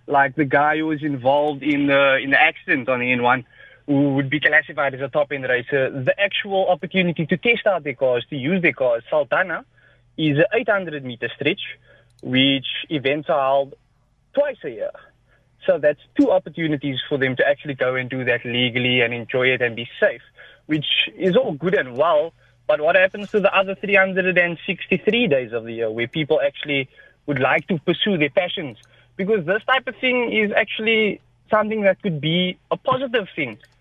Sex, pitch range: male, 135-190 Hz